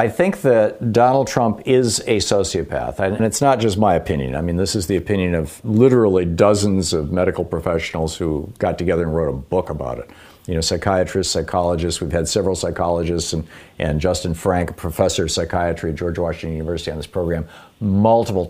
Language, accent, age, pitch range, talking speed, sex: English, American, 50-69, 85-110 Hz, 190 wpm, male